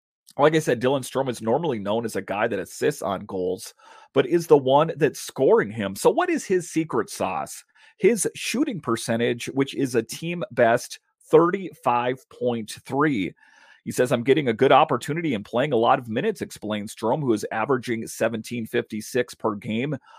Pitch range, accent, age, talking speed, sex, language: 115-165 Hz, American, 30-49, 170 wpm, male, English